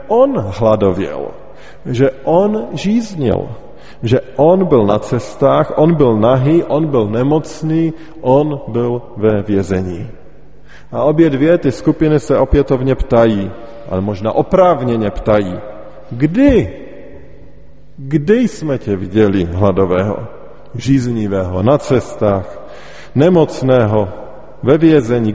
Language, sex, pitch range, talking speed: Slovak, male, 110-155 Hz, 105 wpm